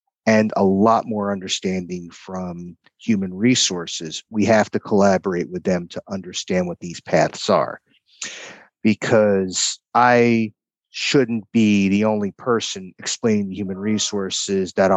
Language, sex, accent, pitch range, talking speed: English, male, American, 95-115 Hz, 125 wpm